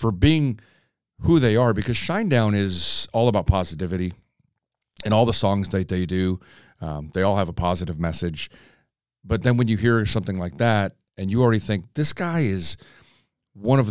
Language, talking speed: English, 180 wpm